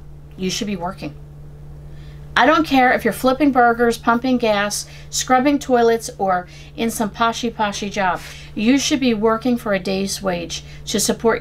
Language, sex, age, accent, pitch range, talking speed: English, female, 40-59, American, 180-250 Hz, 165 wpm